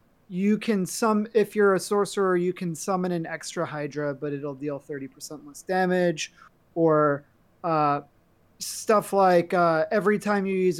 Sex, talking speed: male, 155 wpm